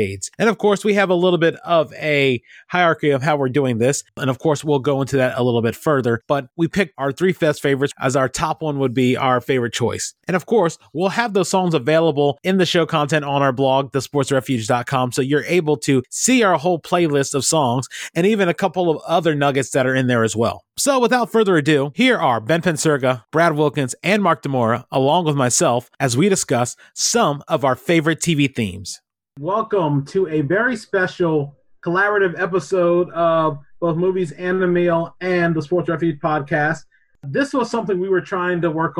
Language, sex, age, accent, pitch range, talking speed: English, male, 30-49, American, 140-180 Hz, 205 wpm